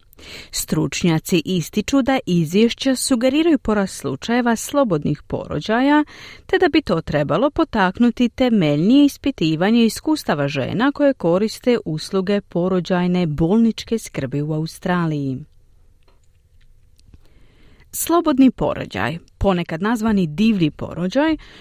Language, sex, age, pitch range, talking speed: Croatian, female, 40-59, 155-245 Hz, 90 wpm